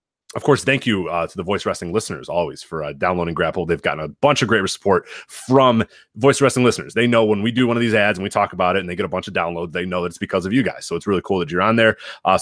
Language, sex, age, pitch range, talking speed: English, male, 30-49, 95-125 Hz, 310 wpm